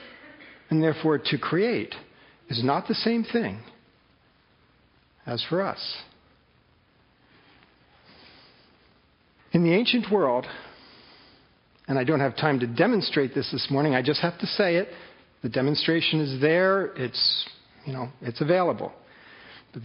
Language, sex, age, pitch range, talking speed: English, male, 50-69, 140-195 Hz, 125 wpm